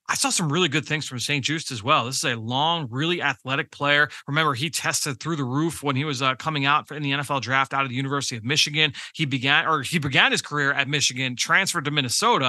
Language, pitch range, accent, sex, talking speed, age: English, 135-170 Hz, American, male, 255 wpm, 30-49